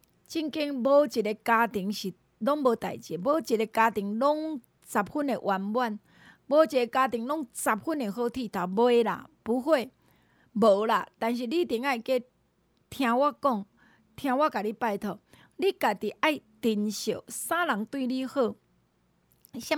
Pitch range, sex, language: 210-285 Hz, female, Chinese